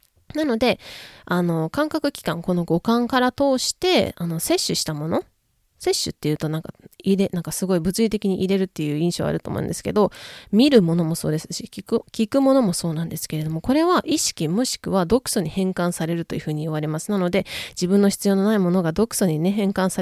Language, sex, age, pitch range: Japanese, female, 20-39, 165-240 Hz